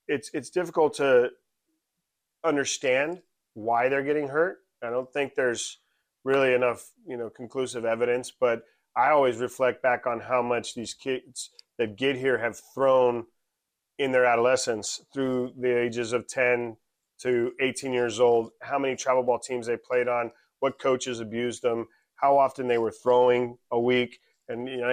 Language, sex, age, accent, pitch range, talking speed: English, male, 30-49, American, 120-130 Hz, 165 wpm